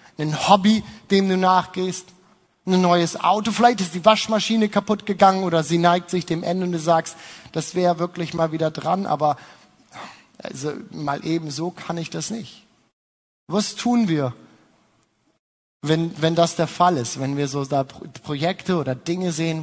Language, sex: German, male